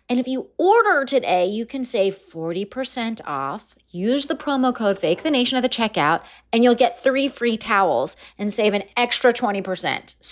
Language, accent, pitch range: English, American, 180-260 Hz